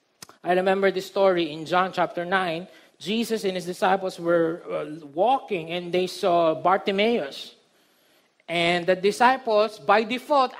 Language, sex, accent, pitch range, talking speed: Filipino, male, native, 180-280 Hz, 135 wpm